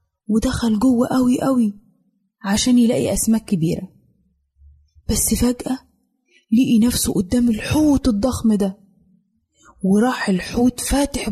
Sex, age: female, 20-39